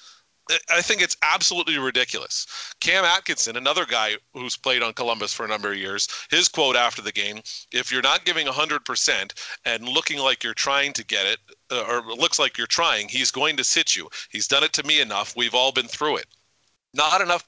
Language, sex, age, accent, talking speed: English, male, 40-59, American, 205 wpm